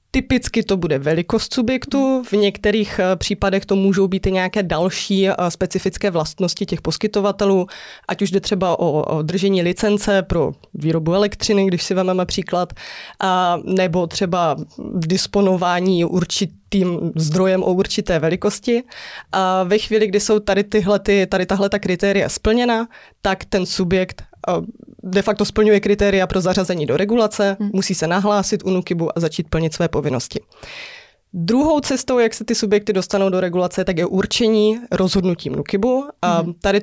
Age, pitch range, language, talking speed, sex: 20-39, 180-210 Hz, Czech, 155 wpm, female